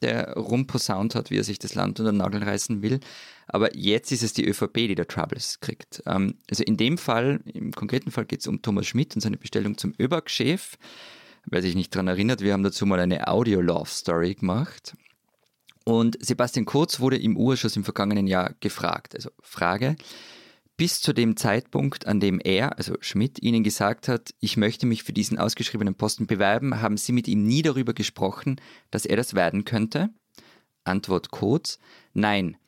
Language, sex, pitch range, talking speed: German, male, 100-120 Hz, 180 wpm